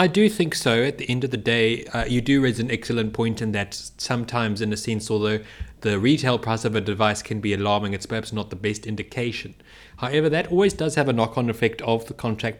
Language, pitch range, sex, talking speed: English, 110-135 Hz, male, 240 wpm